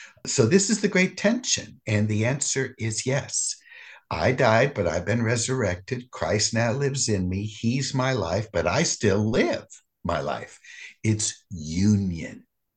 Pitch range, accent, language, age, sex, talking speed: 95-135 Hz, American, English, 60-79, male, 155 wpm